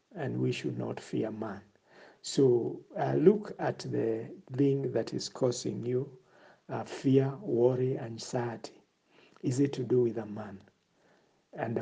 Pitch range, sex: 115-140 Hz, male